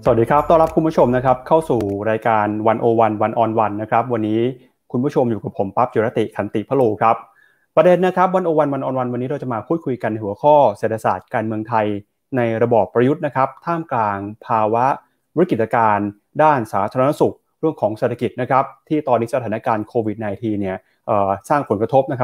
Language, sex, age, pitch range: Thai, male, 20-39, 110-145 Hz